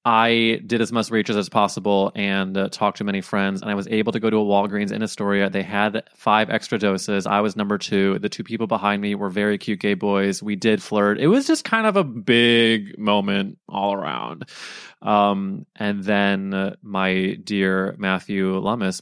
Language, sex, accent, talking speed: English, male, American, 200 wpm